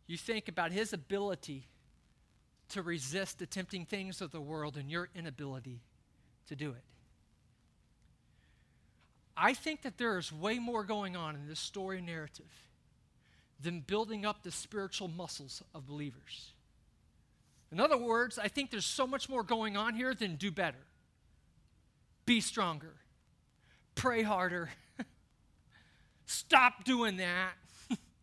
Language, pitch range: English, 170-230 Hz